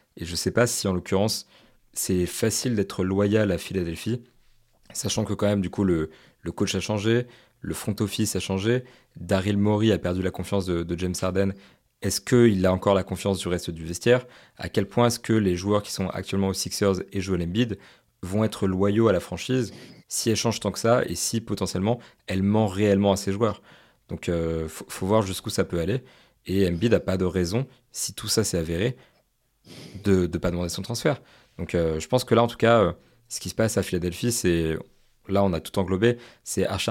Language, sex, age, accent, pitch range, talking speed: French, male, 30-49, French, 90-115 Hz, 225 wpm